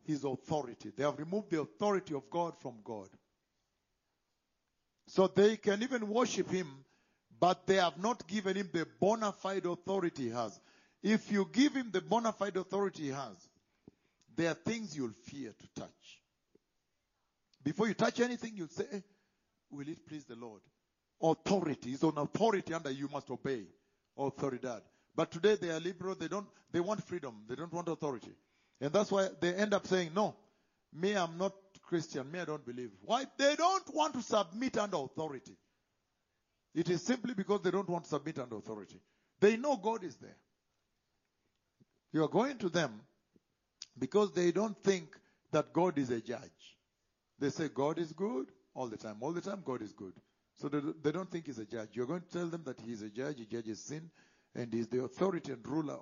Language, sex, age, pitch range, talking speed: English, male, 50-69, 135-200 Hz, 185 wpm